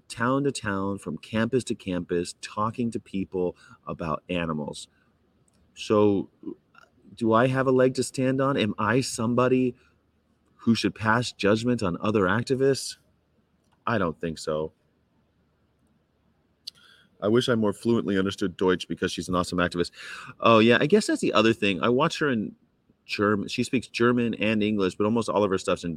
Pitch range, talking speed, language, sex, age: 95-130 Hz, 165 wpm, English, male, 30-49